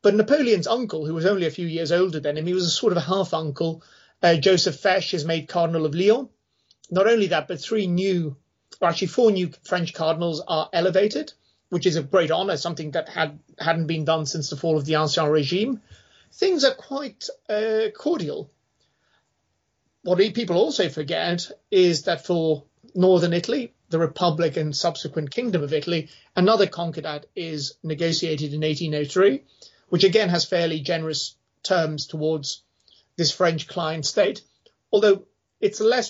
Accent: British